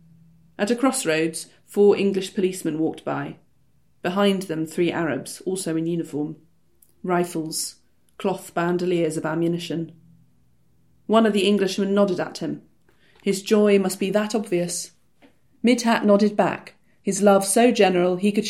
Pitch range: 170-215 Hz